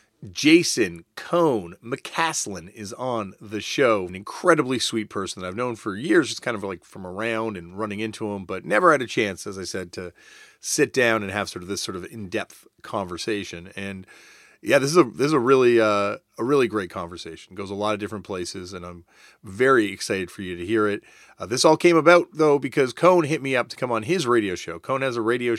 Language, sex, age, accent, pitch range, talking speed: English, male, 40-59, American, 100-130 Hz, 225 wpm